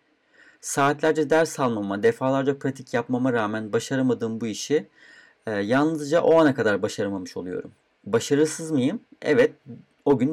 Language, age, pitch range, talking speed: Turkish, 40-59, 130-165 Hz, 130 wpm